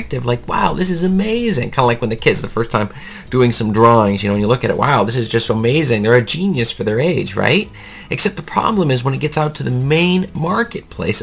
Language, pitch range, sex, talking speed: English, 115-165 Hz, male, 255 wpm